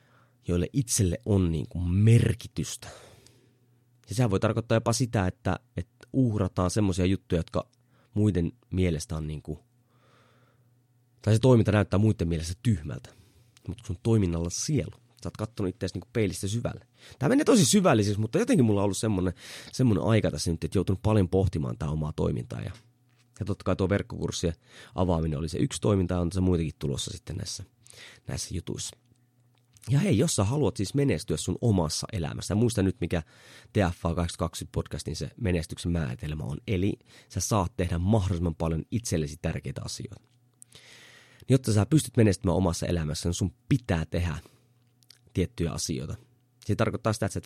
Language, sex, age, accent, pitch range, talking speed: Finnish, male, 30-49, native, 90-120 Hz, 160 wpm